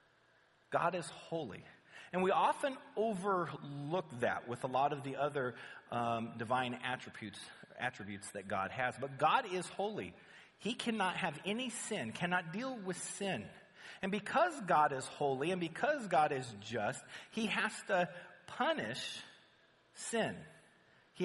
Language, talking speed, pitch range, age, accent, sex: English, 140 wpm, 150-215 Hz, 40-59, American, male